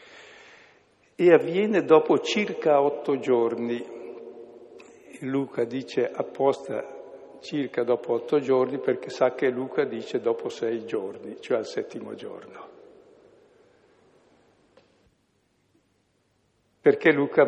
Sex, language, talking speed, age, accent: male, Italian, 95 wpm, 60-79, native